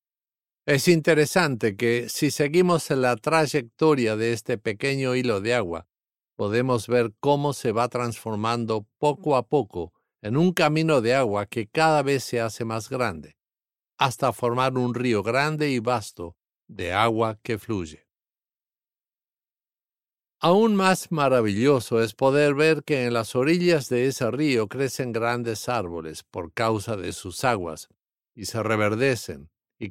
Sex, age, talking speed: male, 50-69, 140 wpm